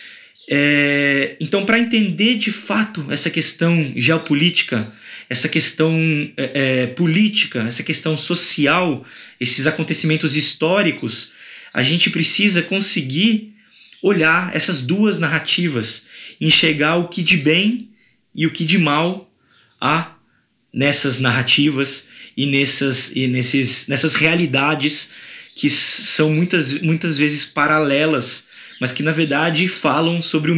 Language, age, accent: Portuguese, 20-39, Brazilian